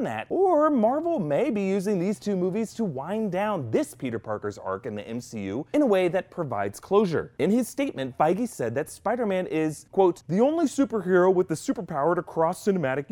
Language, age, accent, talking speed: English, 30-49, American, 195 wpm